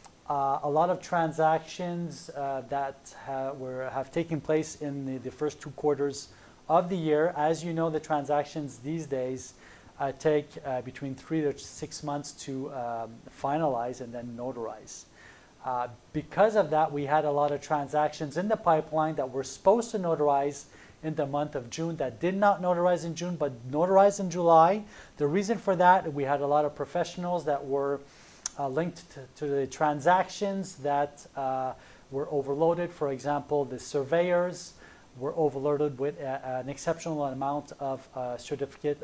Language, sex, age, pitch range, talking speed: French, male, 30-49, 140-165 Hz, 170 wpm